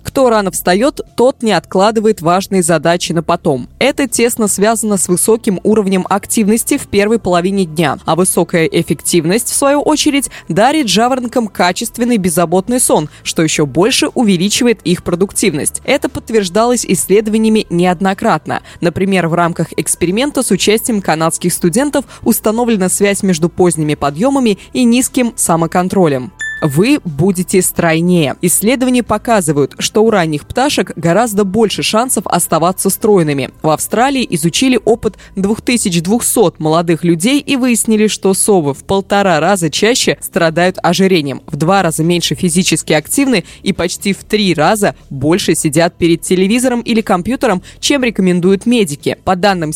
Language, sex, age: Russian, female, 20-39